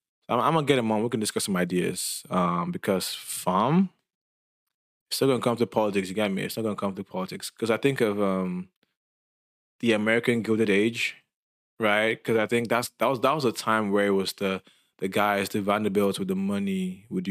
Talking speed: 210 wpm